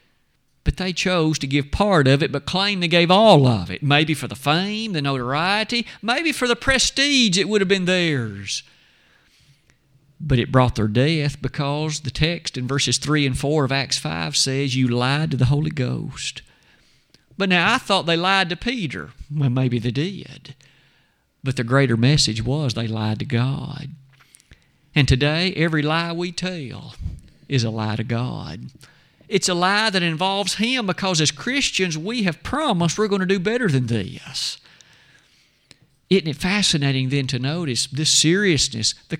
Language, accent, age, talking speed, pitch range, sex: English, American, 50-69, 175 wpm, 135-180 Hz, male